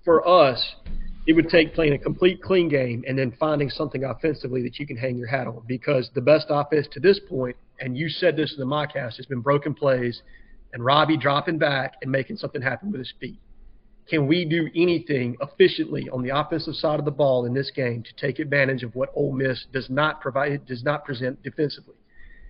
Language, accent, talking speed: English, American, 215 wpm